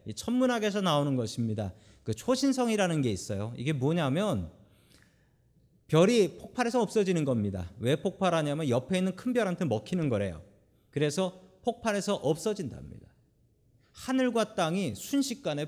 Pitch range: 120-190 Hz